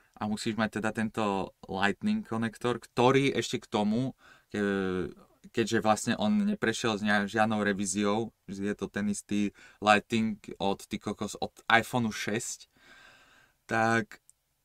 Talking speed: 125 wpm